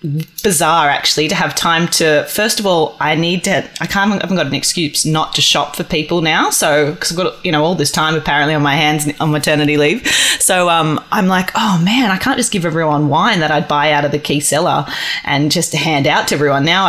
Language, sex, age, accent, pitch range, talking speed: English, female, 20-39, Australian, 145-175 Hz, 245 wpm